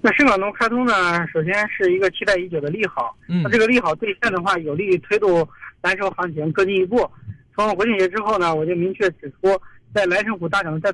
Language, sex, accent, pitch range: Chinese, male, native, 155-200 Hz